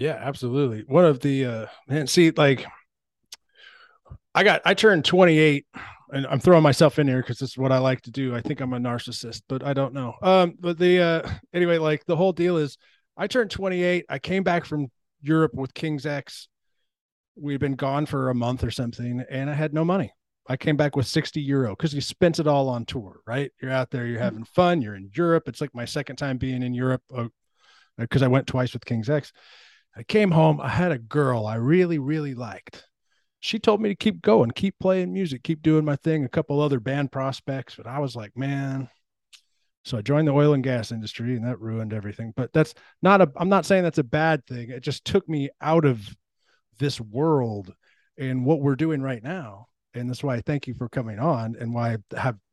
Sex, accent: male, American